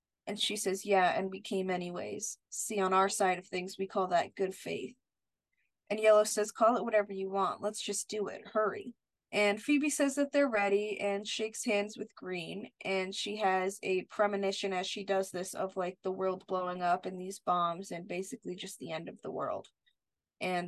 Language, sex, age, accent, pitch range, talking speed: English, female, 20-39, American, 185-215 Hz, 205 wpm